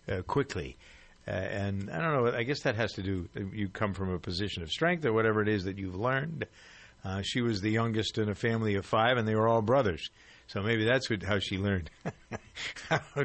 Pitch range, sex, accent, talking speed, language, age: 100-115 Hz, male, American, 225 wpm, English, 50-69